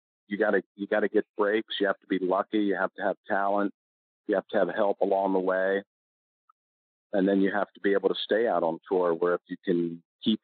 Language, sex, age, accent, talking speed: English, male, 50-69, American, 240 wpm